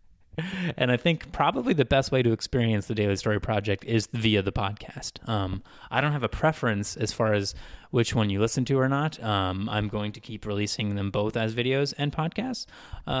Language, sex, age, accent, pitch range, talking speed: English, male, 20-39, American, 110-140 Hz, 210 wpm